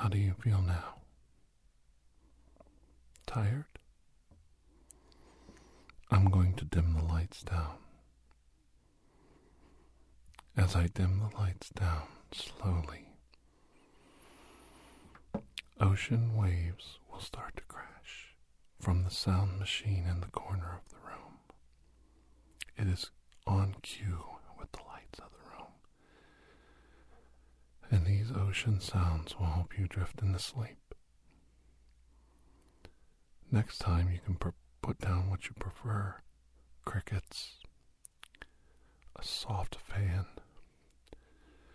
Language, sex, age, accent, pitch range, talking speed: English, male, 50-69, American, 65-95 Hz, 95 wpm